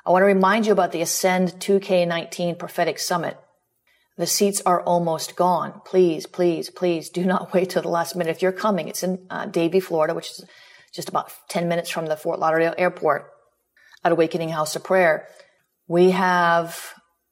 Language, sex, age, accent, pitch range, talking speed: English, female, 40-59, American, 165-185 Hz, 180 wpm